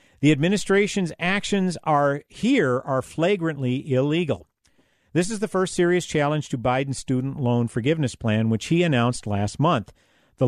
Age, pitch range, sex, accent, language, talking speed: 50-69, 130-195 Hz, male, American, English, 150 wpm